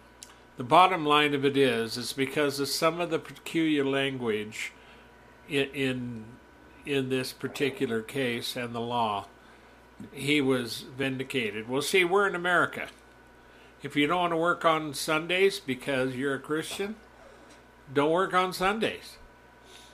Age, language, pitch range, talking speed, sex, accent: 50-69, English, 130-165 Hz, 140 wpm, male, American